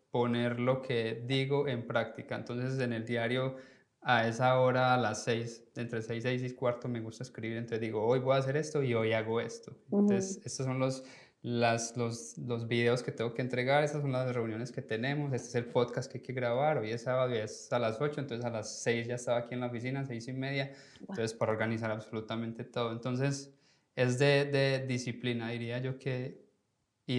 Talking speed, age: 205 wpm, 20-39